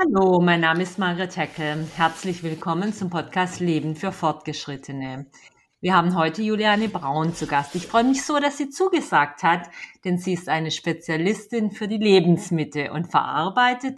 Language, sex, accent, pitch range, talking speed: German, female, German, 160-245 Hz, 165 wpm